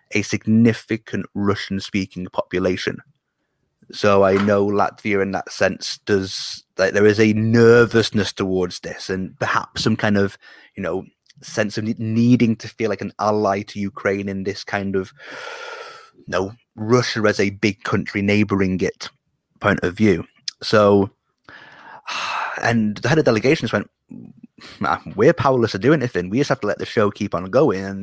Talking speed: 160 wpm